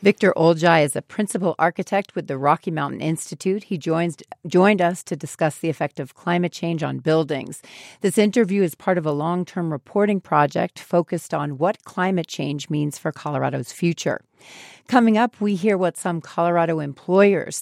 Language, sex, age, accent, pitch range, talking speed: English, female, 40-59, American, 150-185 Hz, 170 wpm